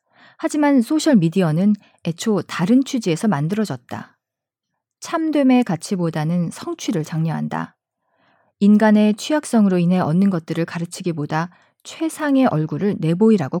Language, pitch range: Korean, 170-230 Hz